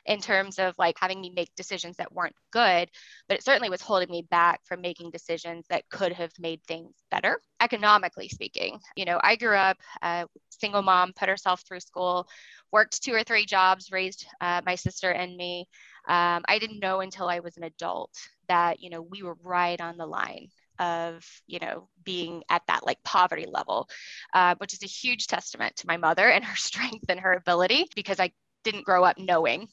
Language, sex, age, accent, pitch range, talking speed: English, female, 20-39, American, 175-205 Hz, 200 wpm